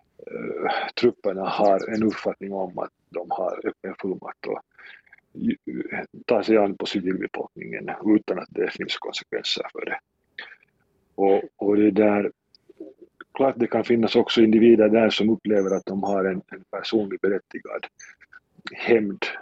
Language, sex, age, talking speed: Swedish, male, 50-69, 135 wpm